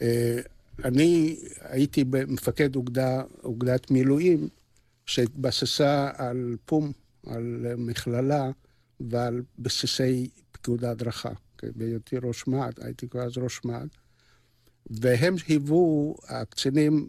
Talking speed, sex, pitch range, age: 95 wpm, male, 120-135 Hz, 60-79